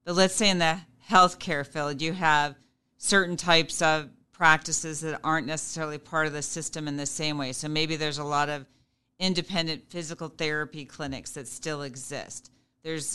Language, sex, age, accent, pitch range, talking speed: English, female, 40-59, American, 145-170 Hz, 175 wpm